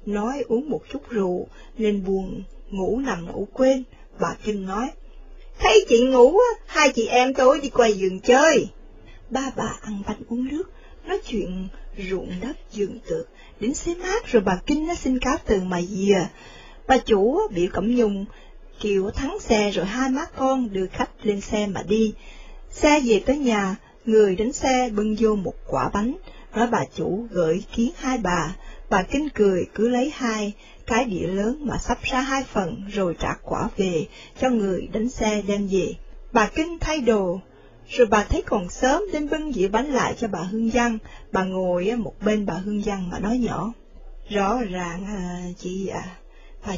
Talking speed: 185 wpm